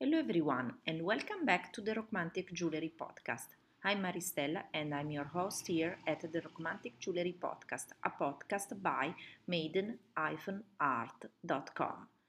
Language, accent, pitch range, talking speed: English, Italian, 160-220 Hz, 125 wpm